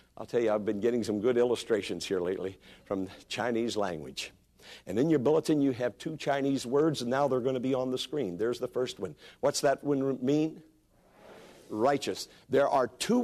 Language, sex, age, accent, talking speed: English, male, 60-79, American, 200 wpm